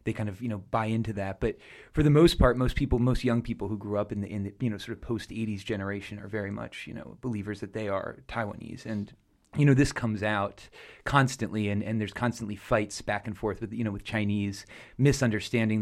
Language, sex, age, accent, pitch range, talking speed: English, male, 30-49, American, 100-120 Hz, 230 wpm